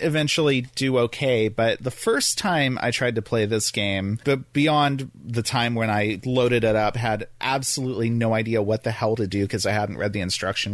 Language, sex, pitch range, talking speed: English, male, 110-140 Hz, 200 wpm